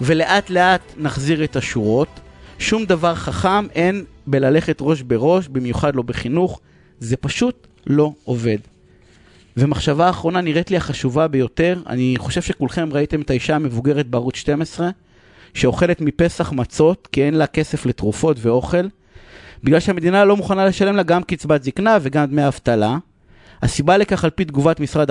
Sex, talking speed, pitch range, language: male, 145 wpm, 130-180 Hz, Hebrew